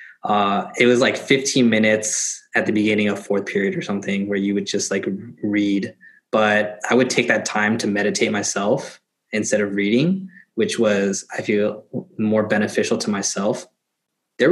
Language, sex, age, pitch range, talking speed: English, male, 20-39, 105-115 Hz, 170 wpm